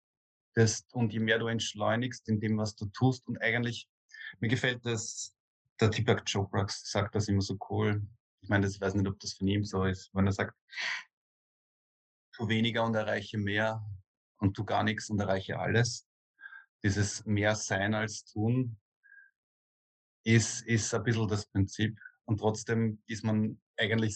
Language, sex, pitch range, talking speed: German, male, 105-115 Hz, 160 wpm